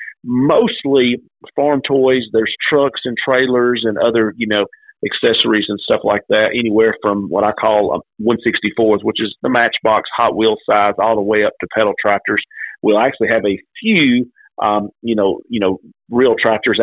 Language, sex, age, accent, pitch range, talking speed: English, male, 40-59, American, 105-125 Hz, 180 wpm